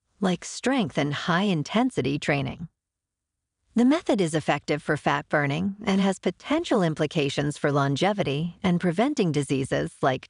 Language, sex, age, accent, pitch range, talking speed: English, female, 50-69, American, 140-205 Hz, 135 wpm